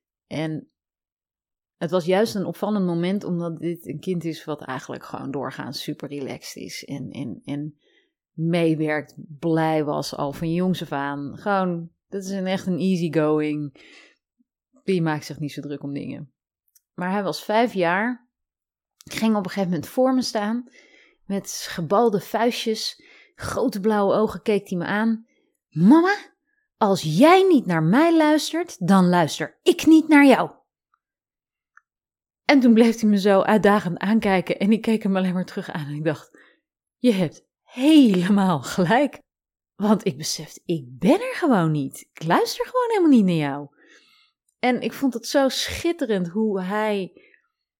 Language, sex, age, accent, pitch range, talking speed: Dutch, female, 30-49, Dutch, 170-245 Hz, 160 wpm